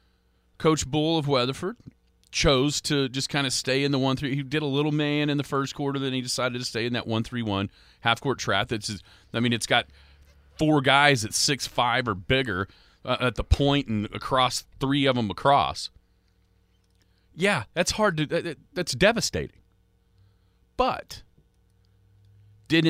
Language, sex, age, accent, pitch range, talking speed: English, male, 40-59, American, 100-150 Hz, 180 wpm